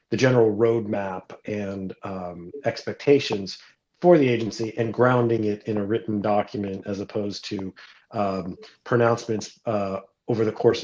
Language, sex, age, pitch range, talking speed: English, male, 40-59, 100-115 Hz, 140 wpm